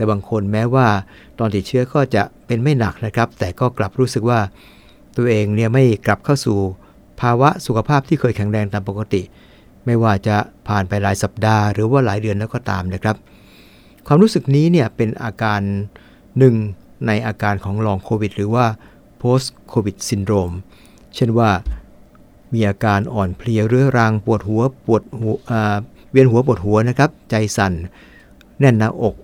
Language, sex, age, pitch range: English, male, 60-79, 100-125 Hz